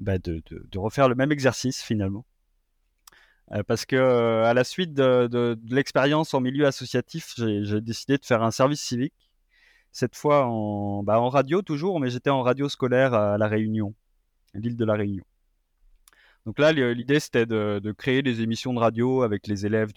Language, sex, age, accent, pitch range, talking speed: French, male, 20-39, French, 100-130 Hz, 195 wpm